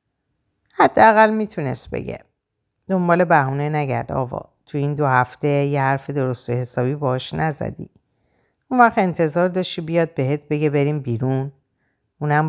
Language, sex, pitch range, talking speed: Persian, female, 120-160 Hz, 135 wpm